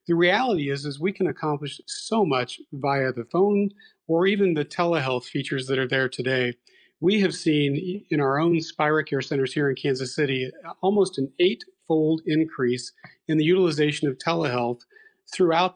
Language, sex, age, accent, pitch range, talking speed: English, male, 40-59, American, 135-180 Hz, 165 wpm